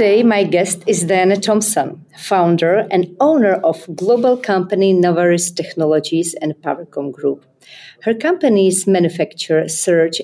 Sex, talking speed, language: female, 125 wpm, Czech